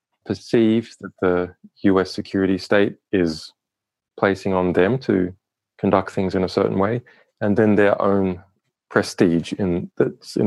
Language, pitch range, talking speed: English, 90-110 Hz, 145 wpm